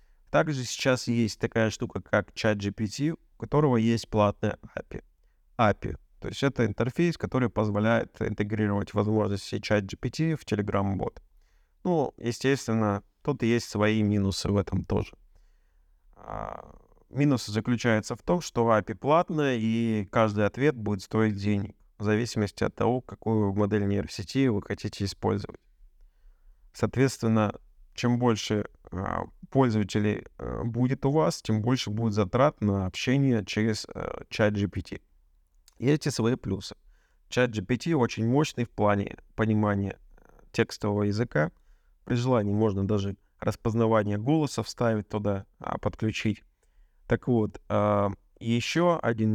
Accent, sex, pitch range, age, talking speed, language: native, male, 100-120 Hz, 30-49, 120 wpm, Russian